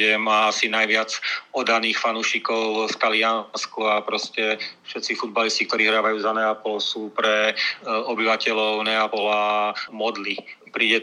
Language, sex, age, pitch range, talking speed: Slovak, male, 40-59, 110-115 Hz, 115 wpm